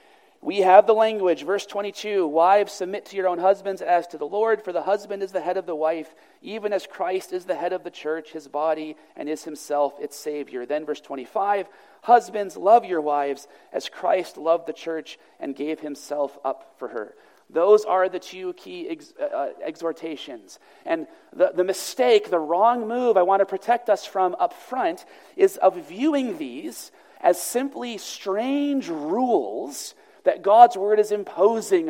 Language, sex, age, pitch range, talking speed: English, male, 40-59, 165-240 Hz, 180 wpm